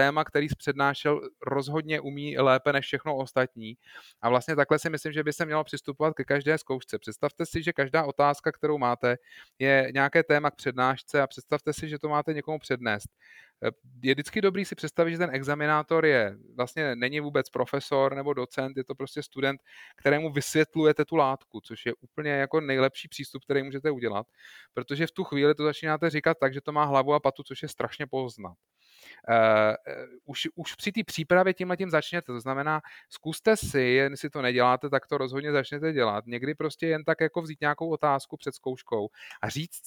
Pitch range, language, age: 130-155 Hz, Slovak, 30-49